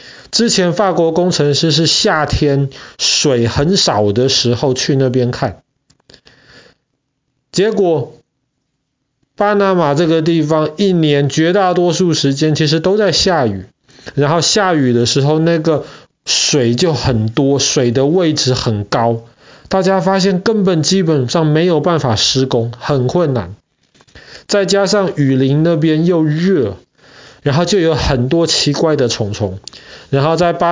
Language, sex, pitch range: Chinese, male, 130-170 Hz